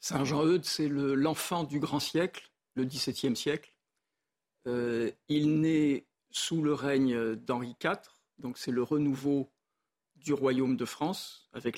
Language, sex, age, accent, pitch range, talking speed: French, male, 50-69, French, 125-150 Hz, 150 wpm